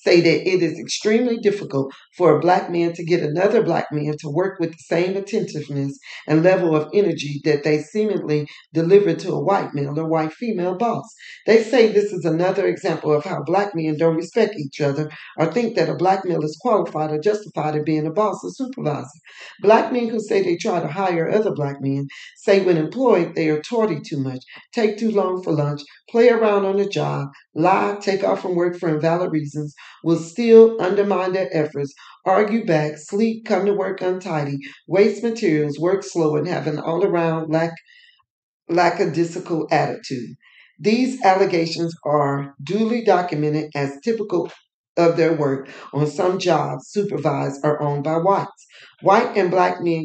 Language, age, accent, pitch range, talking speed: English, 50-69, American, 155-200 Hz, 180 wpm